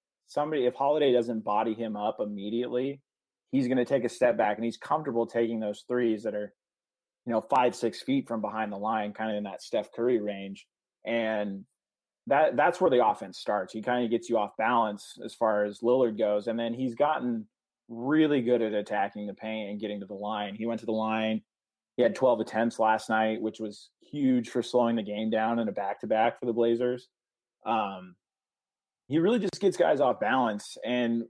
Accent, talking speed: American, 205 wpm